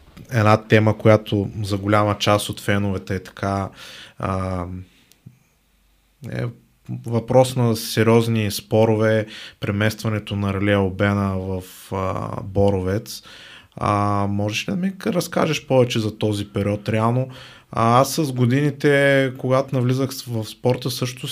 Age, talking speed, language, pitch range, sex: 20-39, 120 wpm, Bulgarian, 105-125 Hz, male